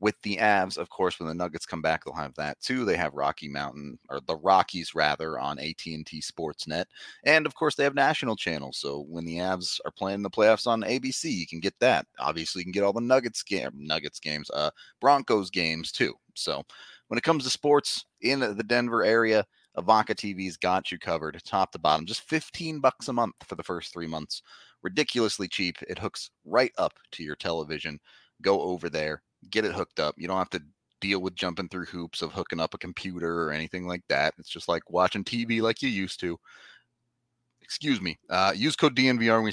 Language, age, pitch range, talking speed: English, 30-49, 85-115 Hz, 210 wpm